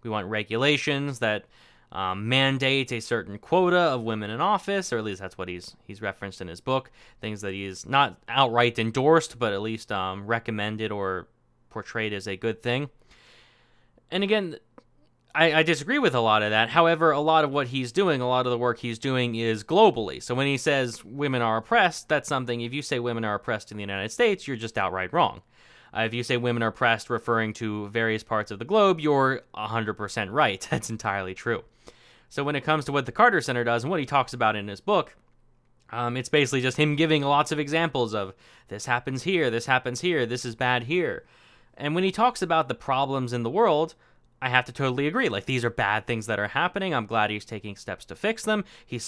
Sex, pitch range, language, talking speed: male, 110-145 Hz, English, 220 wpm